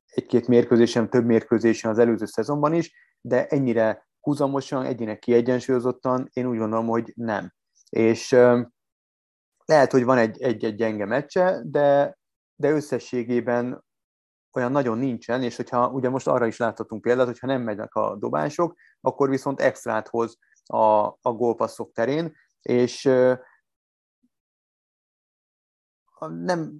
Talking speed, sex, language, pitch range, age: 120 wpm, male, Hungarian, 115-145 Hz, 30-49